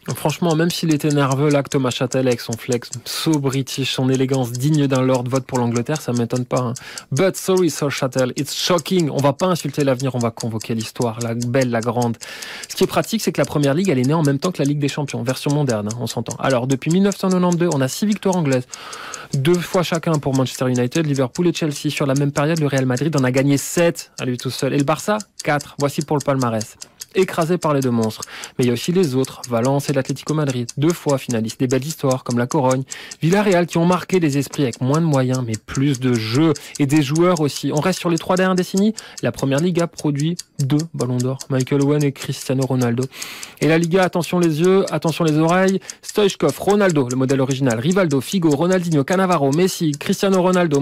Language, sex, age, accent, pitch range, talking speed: French, male, 20-39, French, 130-175 Hz, 230 wpm